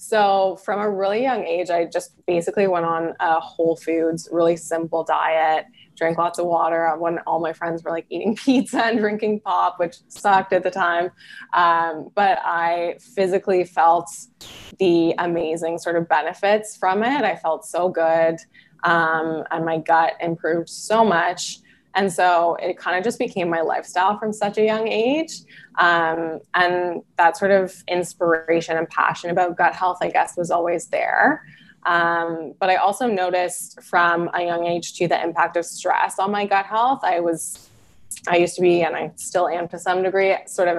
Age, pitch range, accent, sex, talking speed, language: 20-39, 165-190 Hz, American, female, 180 wpm, English